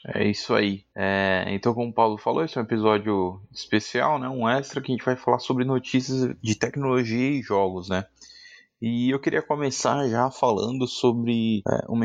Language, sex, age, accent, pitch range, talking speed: Portuguese, male, 20-39, Brazilian, 100-120 Hz, 180 wpm